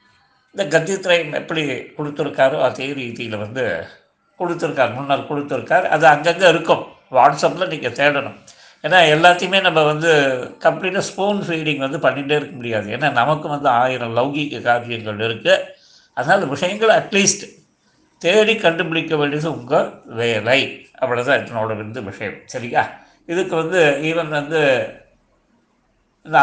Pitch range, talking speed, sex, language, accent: 130-180 Hz, 120 wpm, male, Tamil, native